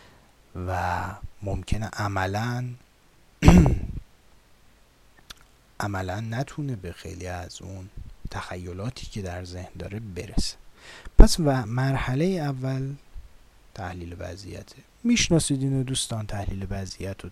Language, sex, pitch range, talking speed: Persian, male, 95-130 Hz, 85 wpm